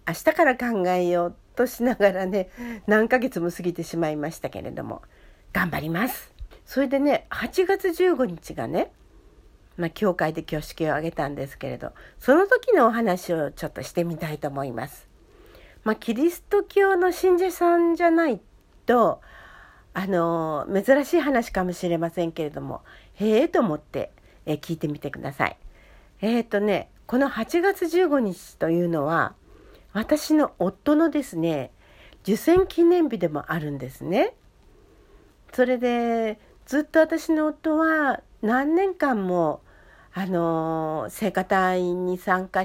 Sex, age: female, 50-69